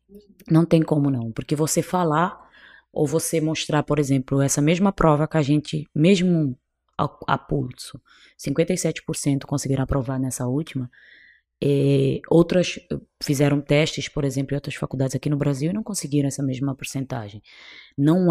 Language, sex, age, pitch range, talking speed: Portuguese, female, 20-39, 140-170 Hz, 150 wpm